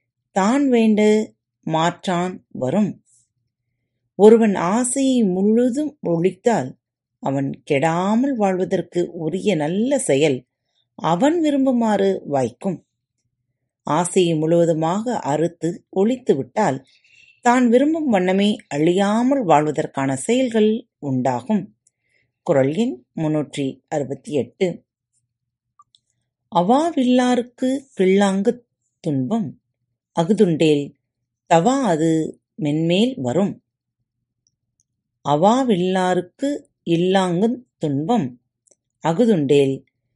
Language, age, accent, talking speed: Tamil, 30-49, native, 55 wpm